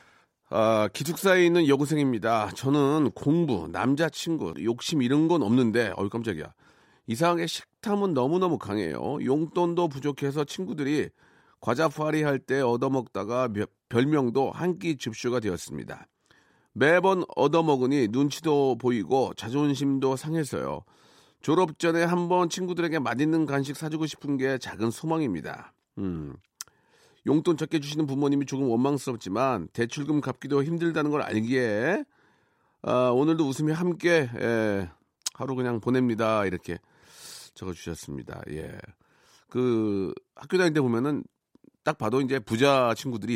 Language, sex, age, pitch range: Korean, male, 40-59, 110-155 Hz